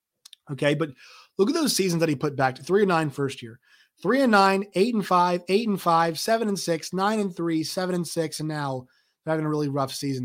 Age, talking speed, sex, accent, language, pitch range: 30-49, 245 wpm, male, American, English, 135-180 Hz